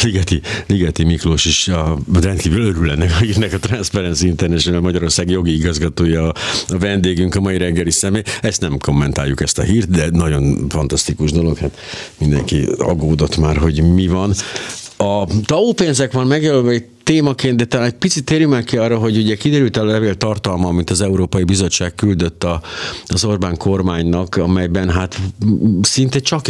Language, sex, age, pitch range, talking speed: Hungarian, male, 50-69, 85-105 Hz, 155 wpm